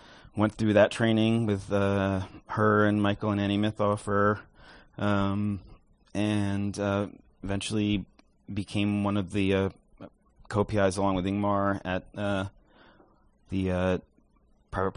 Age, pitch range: 30-49, 95-105 Hz